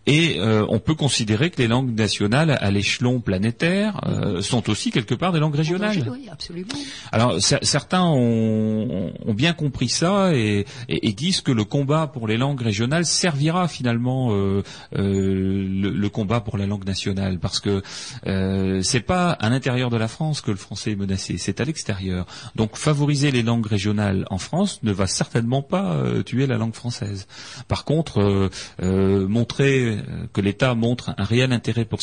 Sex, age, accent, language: male, 30-49, French, French